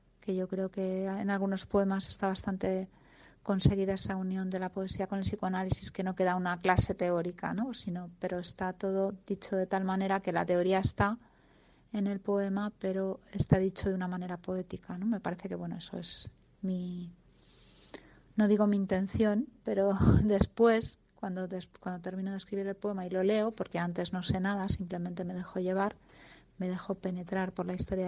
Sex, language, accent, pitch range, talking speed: female, Spanish, Spanish, 180-195 Hz, 185 wpm